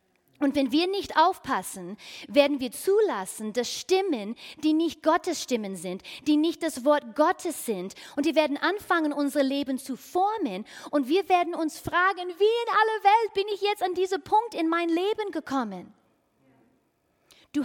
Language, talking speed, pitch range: German, 165 wpm, 245-335 Hz